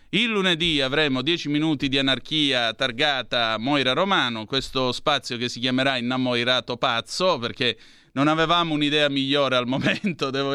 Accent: native